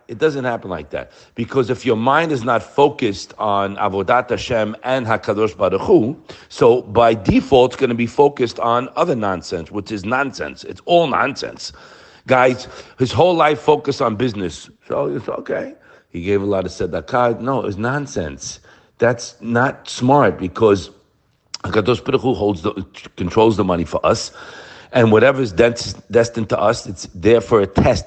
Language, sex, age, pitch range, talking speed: English, male, 50-69, 105-135 Hz, 165 wpm